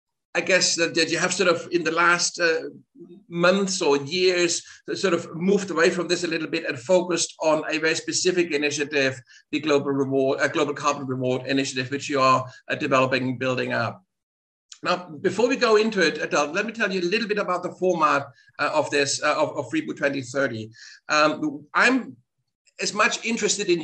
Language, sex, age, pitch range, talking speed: English, male, 60-79, 150-190 Hz, 195 wpm